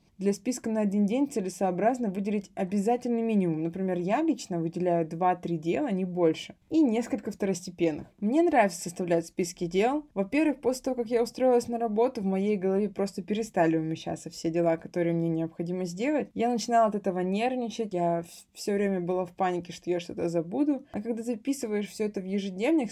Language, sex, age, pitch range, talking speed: Russian, female, 20-39, 175-225 Hz, 175 wpm